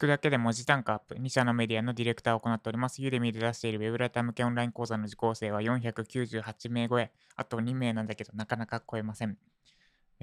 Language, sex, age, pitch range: Japanese, male, 20-39, 115-150 Hz